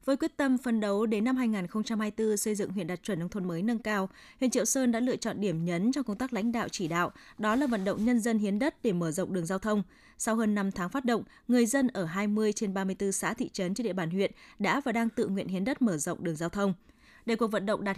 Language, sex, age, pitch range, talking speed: Vietnamese, female, 20-39, 195-240 Hz, 275 wpm